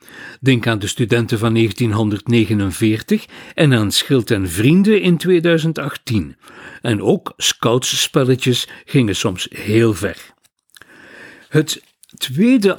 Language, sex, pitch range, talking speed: Dutch, male, 115-165 Hz, 105 wpm